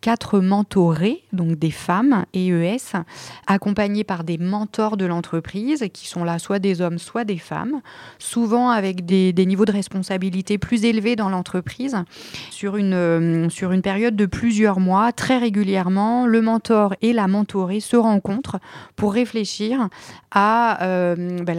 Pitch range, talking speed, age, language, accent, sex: 185-220 Hz, 145 wpm, 30-49, French, French, female